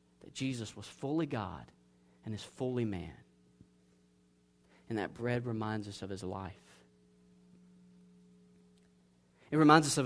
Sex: male